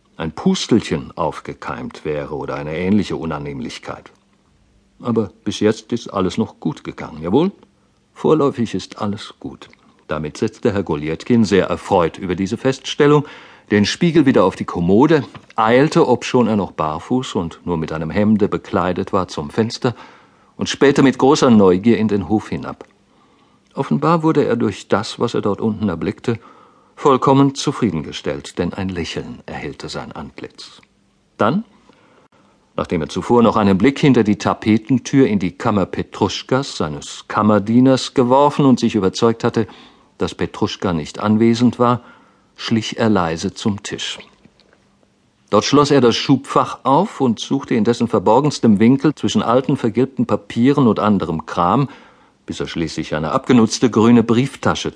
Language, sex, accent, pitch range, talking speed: German, male, German, 95-130 Hz, 145 wpm